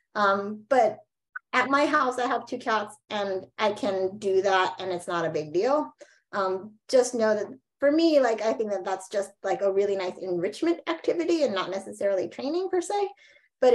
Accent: American